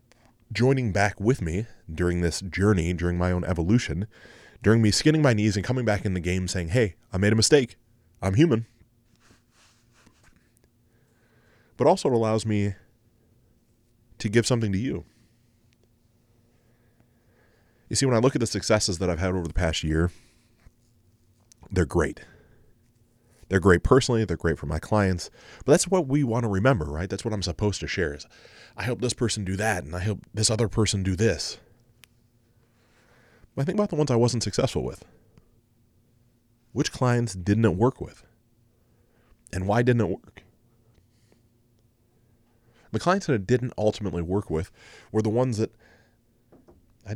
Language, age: English, 30-49